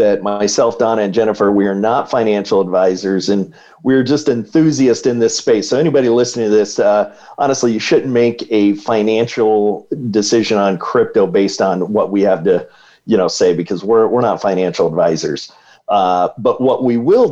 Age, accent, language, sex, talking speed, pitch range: 40-59, American, English, male, 180 wpm, 100-140 Hz